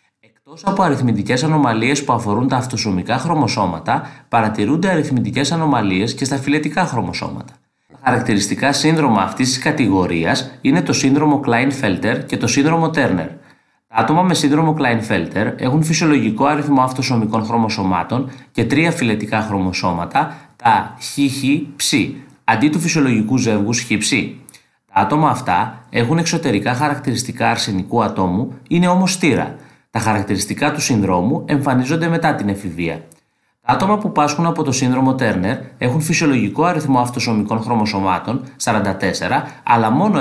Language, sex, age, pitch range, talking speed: Greek, male, 30-49, 105-145 Hz, 130 wpm